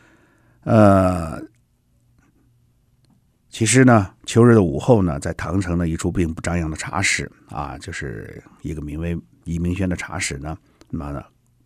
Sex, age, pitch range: male, 60-79, 80-110 Hz